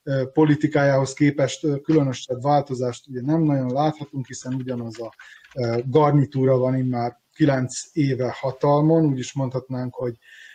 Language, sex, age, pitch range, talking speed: Hungarian, male, 30-49, 120-145 Hz, 120 wpm